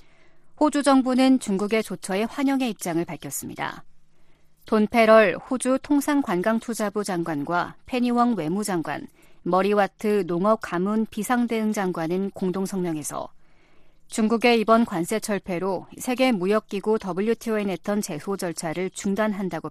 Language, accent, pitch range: Korean, native, 180-230 Hz